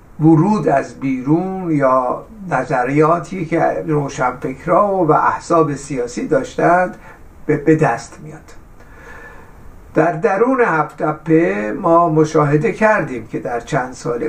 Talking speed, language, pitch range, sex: 100 wpm, Persian, 135-170 Hz, male